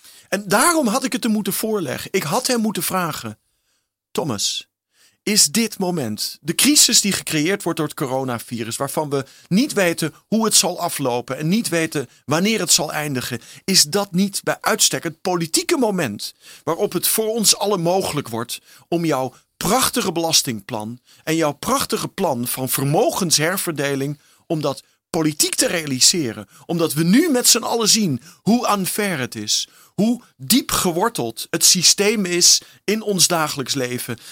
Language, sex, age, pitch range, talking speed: Dutch, male, 40-59, 140-200 Hz, 155 wpm